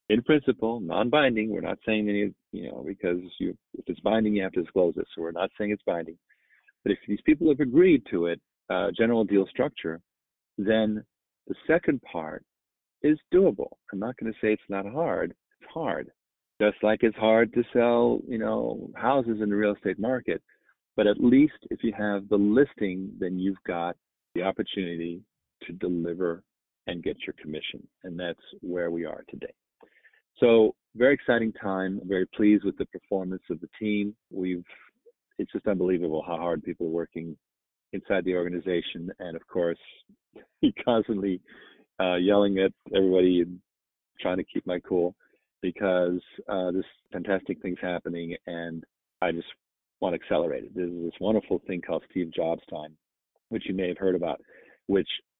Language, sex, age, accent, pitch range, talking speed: English, male, 50-69, American, 90-110 Hz, 170 wpm